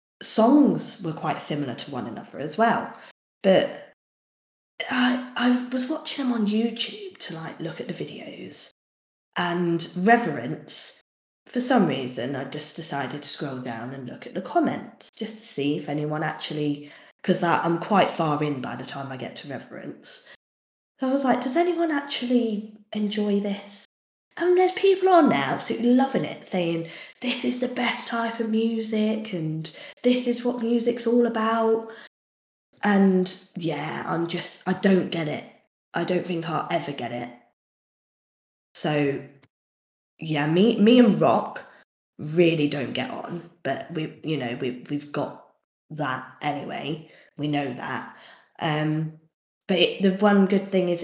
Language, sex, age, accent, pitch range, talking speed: English, female, 10-29, British, 150-235 Hz, 160 wpm